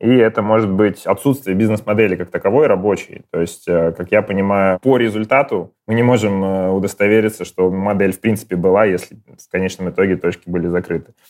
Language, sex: Russian, male